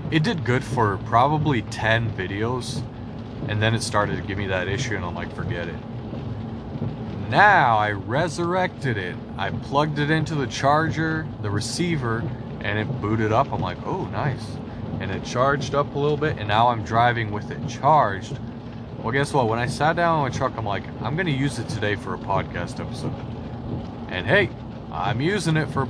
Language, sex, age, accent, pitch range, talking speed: English, male, 30-49, American, 110-130 Hz, 195 wpm